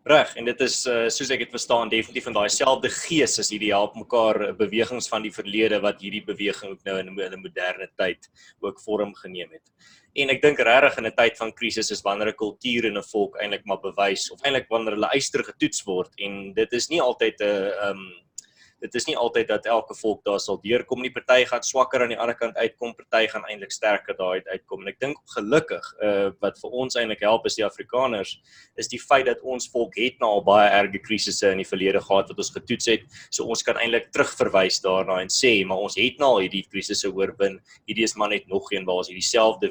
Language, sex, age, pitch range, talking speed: English, male, 20-39, 100-120 Hz, 220 wpm